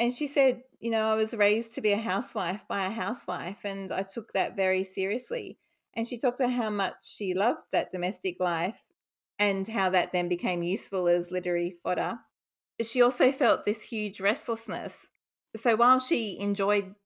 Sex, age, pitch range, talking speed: female, 30-49, 180-210 Hz, 180 wpm